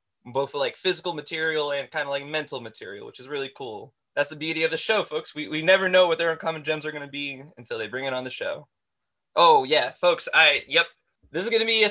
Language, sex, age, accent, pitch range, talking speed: English, male, 20-39, American, 145-195 Hz, 255 wpm